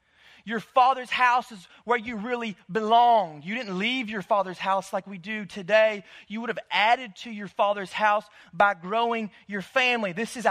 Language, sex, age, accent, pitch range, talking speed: English, male, 30-49, American, 200-245 Hz, 185 wpm